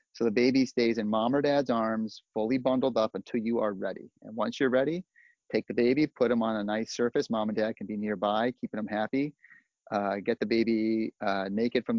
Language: English